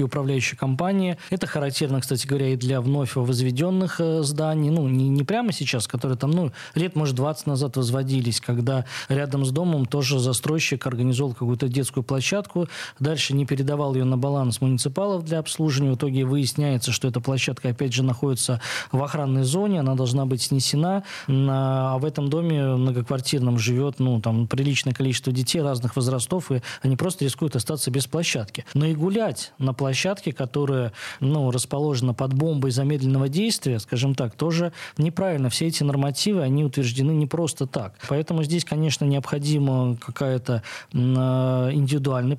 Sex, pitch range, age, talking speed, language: male, 130-155 Hz, 20-39, 155 wpm, Russian